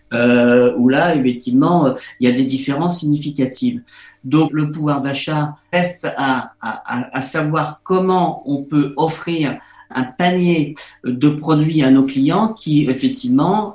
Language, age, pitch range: French, 50-69, 135-165 Hz